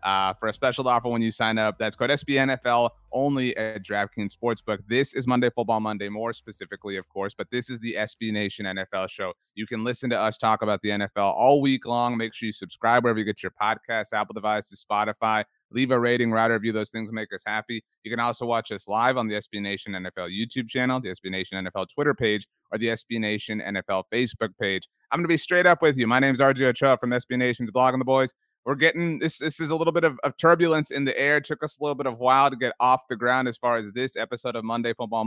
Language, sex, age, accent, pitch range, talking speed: English, male, 30-49, American, 110-140 Hz, 255 wpm